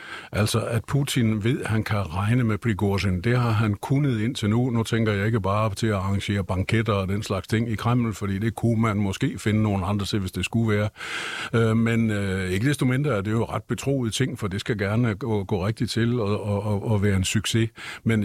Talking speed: 235 wpm